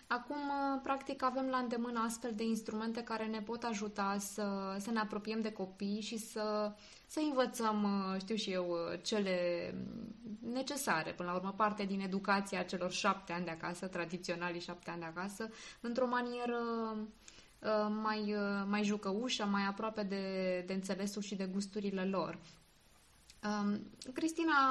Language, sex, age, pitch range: Romanian, female, 20-39, 190-235 Hz